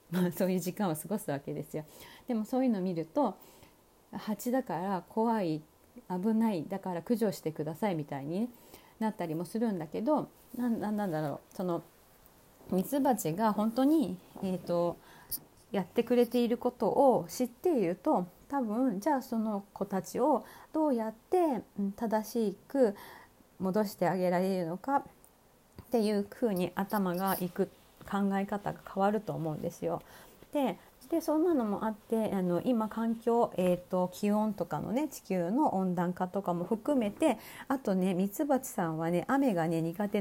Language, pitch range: Japanese, 175-235 Hz